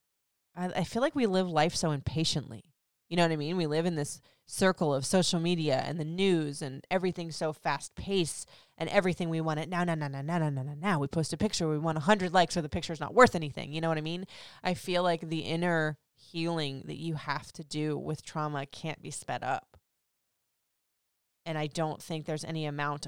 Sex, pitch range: female, 155-190 Hz